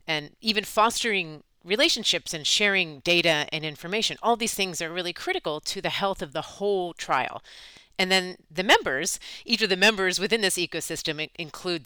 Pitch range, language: 155-205 Hz, English